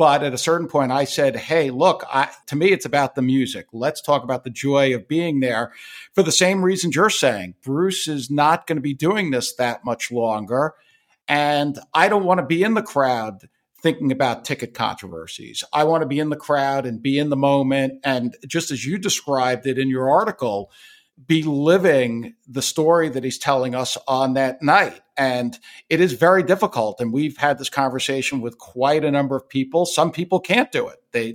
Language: English